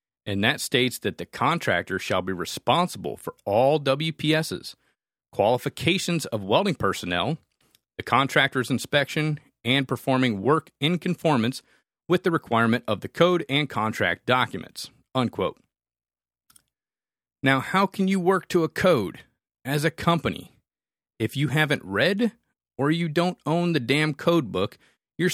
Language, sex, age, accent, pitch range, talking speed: English, male, 40-59, American, 115-165 Hz, 135 wpm